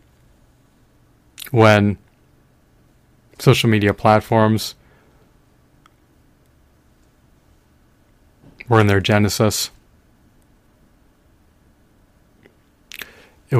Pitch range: 100-110 Hz